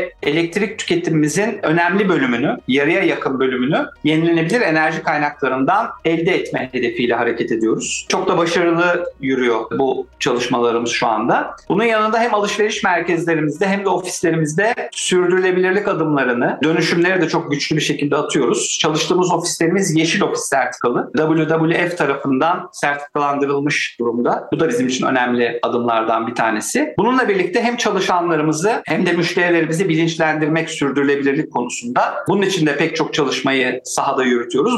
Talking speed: 130 wpm